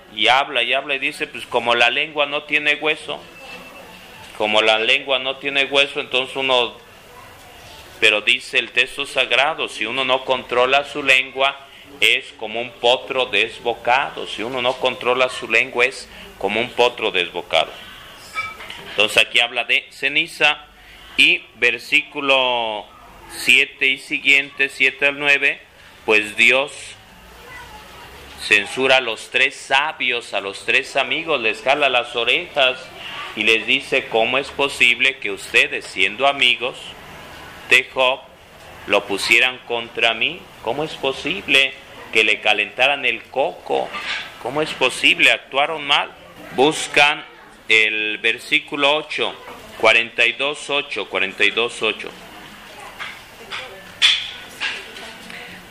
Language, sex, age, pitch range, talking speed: Spanish, male, 40-59, 120-140 Hz, 120 wpm